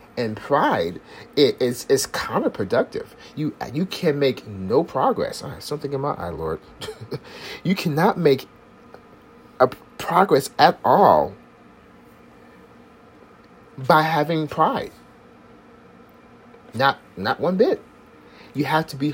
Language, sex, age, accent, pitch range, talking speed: English, male, 40-59, American, 105-155 Hz, 115 wpm